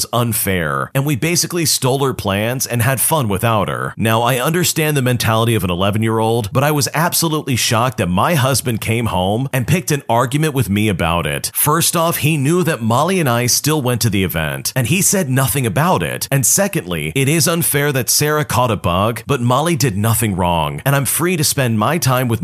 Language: English